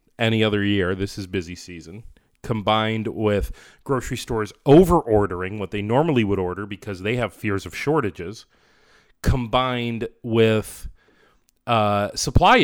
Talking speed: 130 wpm